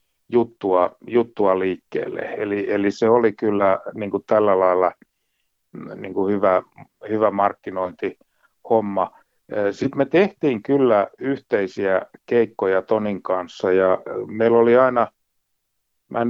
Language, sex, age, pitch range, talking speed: Finnish, male, 60-79, 100-115 Hz, 95 wpm